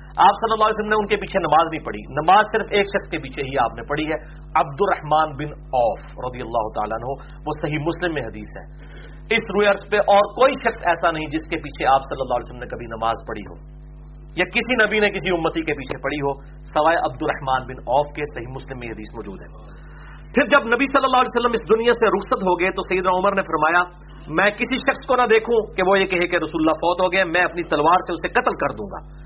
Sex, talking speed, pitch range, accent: male, 205 wpm, 150-205 Hz, Indian